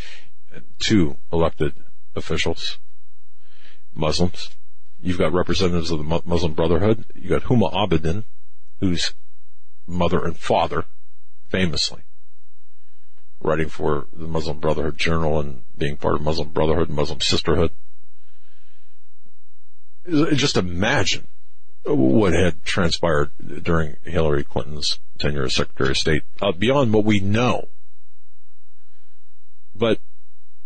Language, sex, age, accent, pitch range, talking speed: English, male, 50-69, American, 80-100 Hz, 105 wpm